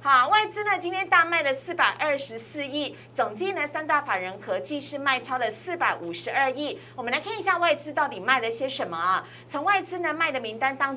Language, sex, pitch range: Chinese, female, 235-300 Hz